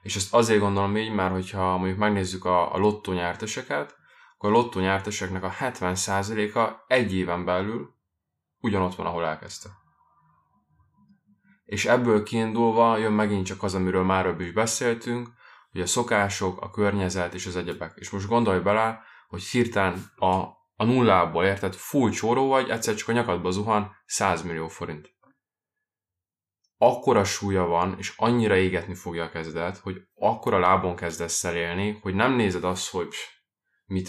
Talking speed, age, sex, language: 155 wpm, 20-39, male, Hungarian